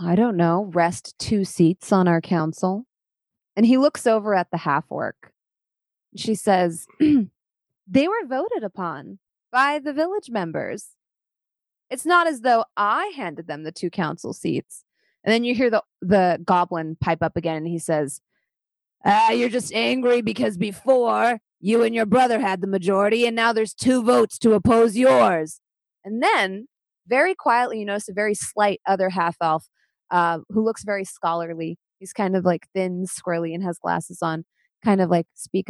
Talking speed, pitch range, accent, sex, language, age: 170 wpm, 170-220 Hz, American, female, English, 20-39